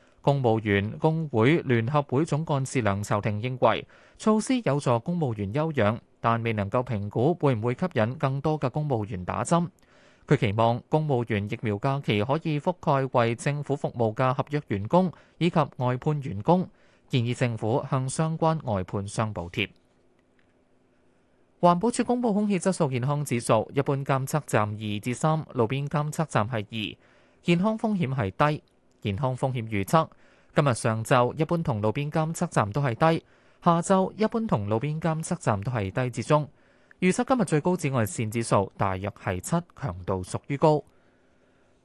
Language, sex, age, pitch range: Chinese, male, 20-39, 115-160 Hz